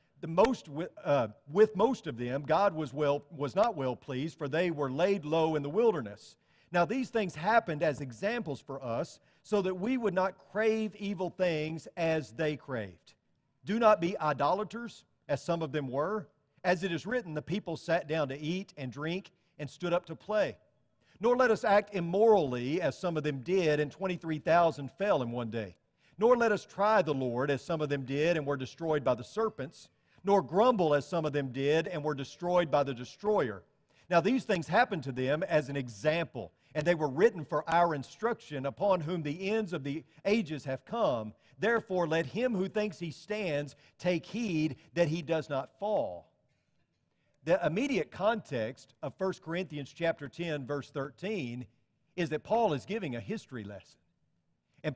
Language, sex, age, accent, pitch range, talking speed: English, male, 50-69, American, 145-195 Hz, 185 wpm